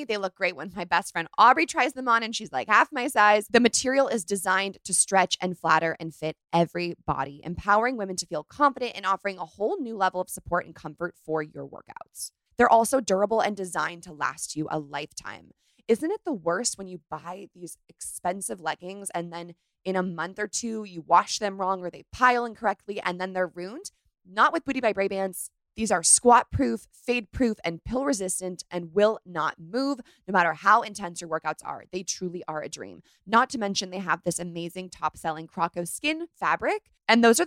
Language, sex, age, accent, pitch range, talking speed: English, female, 20-39, American, 170-220 Hz, 205 wpm